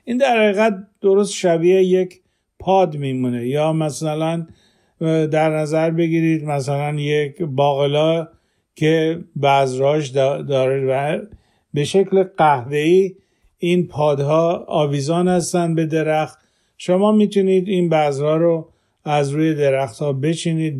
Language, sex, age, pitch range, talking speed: Persian, male, 50-69, 145-185 Hz, 115 wpm